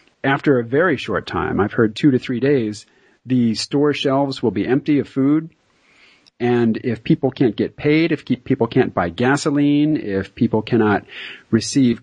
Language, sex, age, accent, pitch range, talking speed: English, male, 40-59, American, 120-150 Hz, 170 wpm